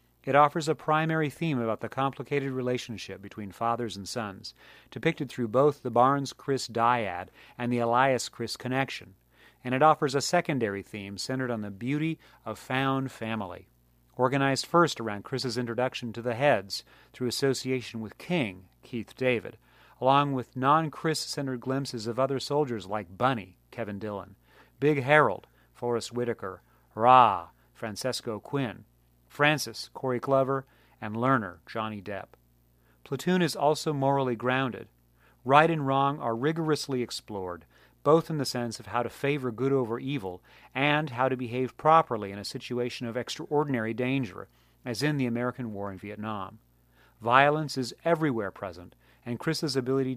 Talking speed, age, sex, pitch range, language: 145 wpm, 40-59, male, 110-140 Hz, English